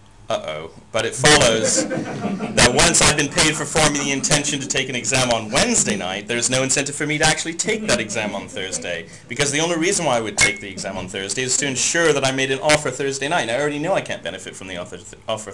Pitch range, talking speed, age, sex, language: 100-140 Hz, 250 wpm, 30-49, male, English